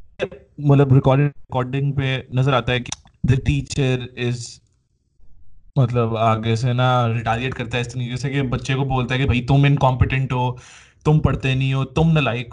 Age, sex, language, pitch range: 20-39, male, Urdu, 125-150 Hz